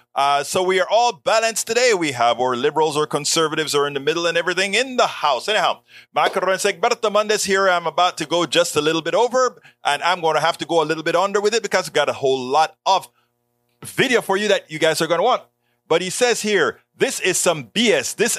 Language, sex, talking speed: English, male, 250 wpm